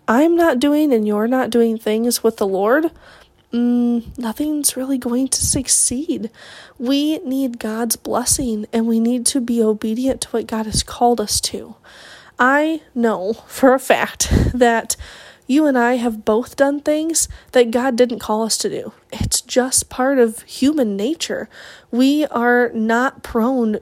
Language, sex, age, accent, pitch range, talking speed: English, female, 20-39, American, 225-270 Hz, 160 wpm